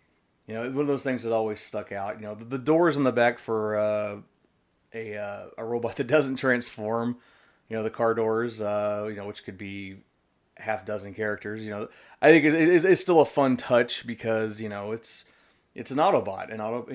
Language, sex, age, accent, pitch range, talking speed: English, male, 30-49, American, 105-120 Hz, 220 wpm